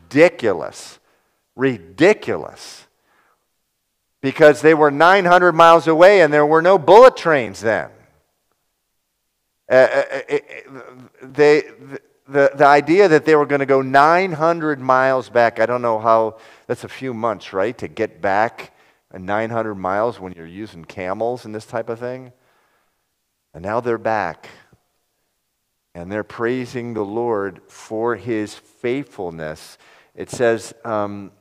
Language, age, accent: English, 50-69, American